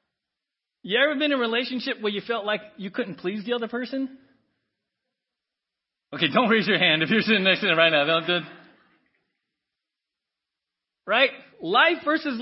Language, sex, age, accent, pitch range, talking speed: English, male, 40-59, American, 185-260 Hz, 155 wpm